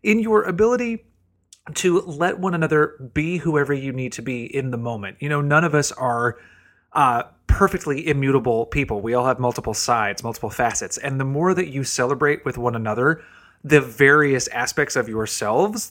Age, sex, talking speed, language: 30-49, male, 175 wpm, English